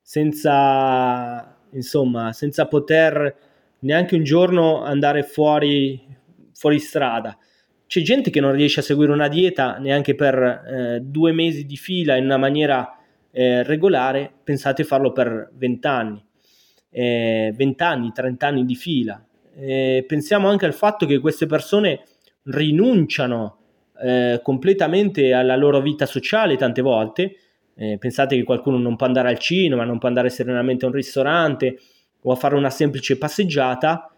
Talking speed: 145 wpm